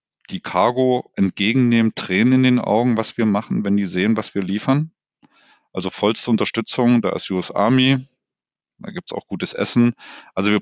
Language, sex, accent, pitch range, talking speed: German, male, German, 95-130 Hz, 175 wpm